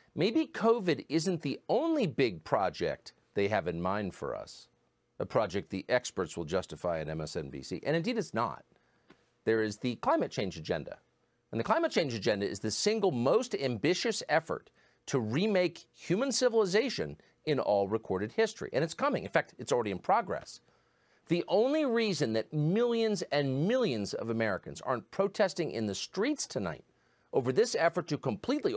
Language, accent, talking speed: English, American, 165 wpm